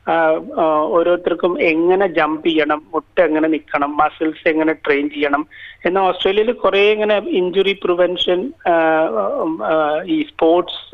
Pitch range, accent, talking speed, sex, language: 160-230 Hz, native, 105 wpm, male, Malayalam